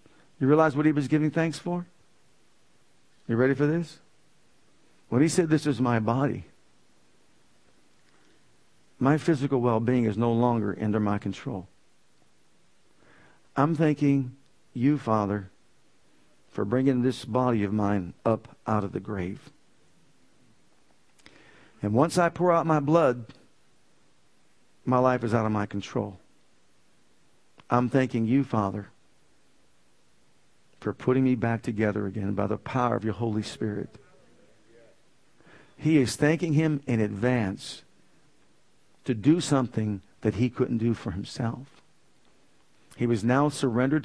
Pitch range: 110-140 Hz